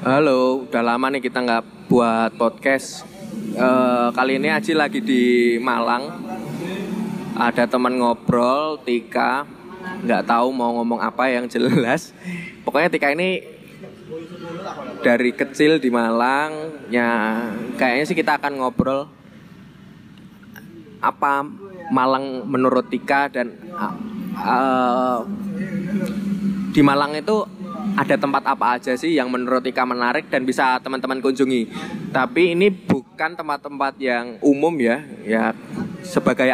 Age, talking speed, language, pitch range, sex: 20-39, 115 wpm, Indonesian, 125-180 Hz, male